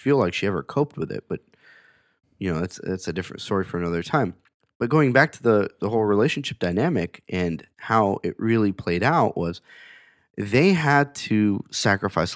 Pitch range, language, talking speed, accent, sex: 85-125 Hz, English, 185 wpm, American, male